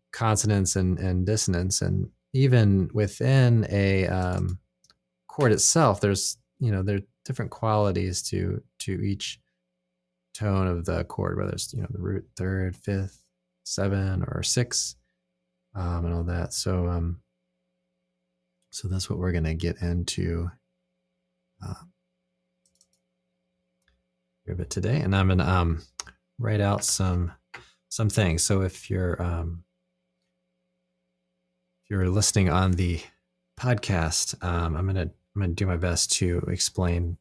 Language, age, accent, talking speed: English, 20-39, American, 135 wpm